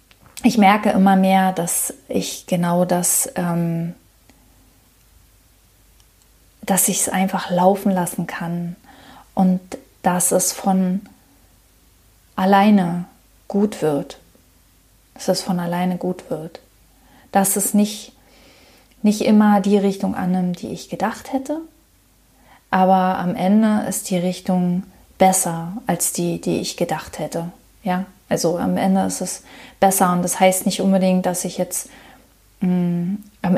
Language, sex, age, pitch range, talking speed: German, female, 30-49, 180-200 Hz, 125 wpm